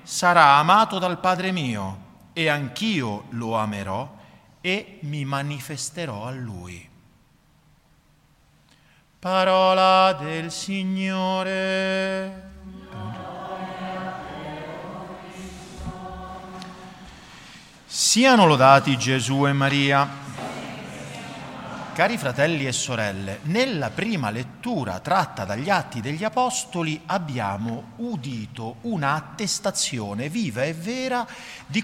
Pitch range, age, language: 140-215 Hz, 50-69, Italian